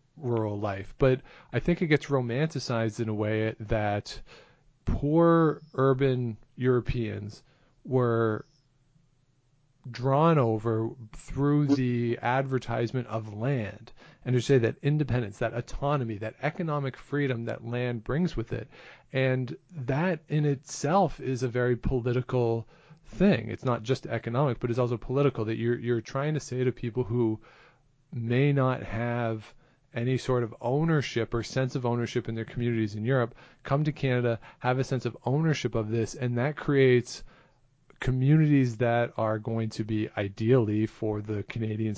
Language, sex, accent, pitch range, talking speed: English, male, American, 115-135 Hz, 145 wpm